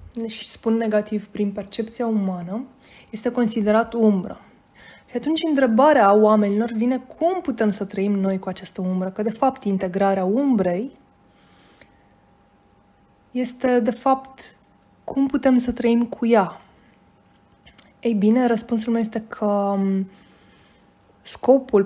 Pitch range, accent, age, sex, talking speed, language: 195-235 Hz, native, 20-39, female, 120 wpm, Romanian